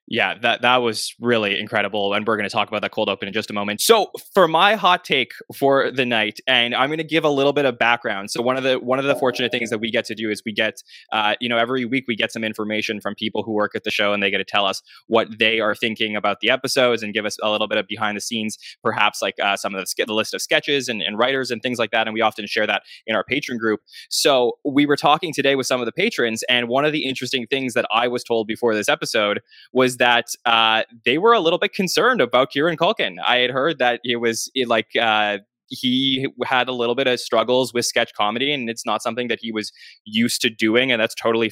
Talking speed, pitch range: 270 wpm, 110-130 Hz